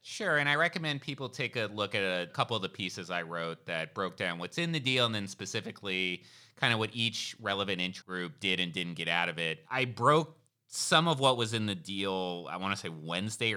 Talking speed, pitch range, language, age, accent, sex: 240 wpm, 95-125 Hz, English, 30-49, American, male